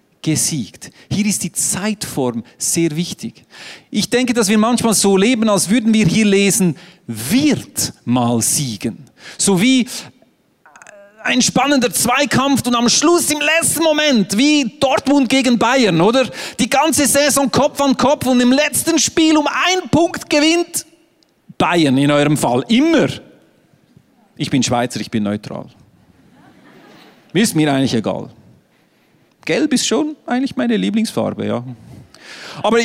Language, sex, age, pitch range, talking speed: German, male, 40-59, 190-280 Hz, 140 wpm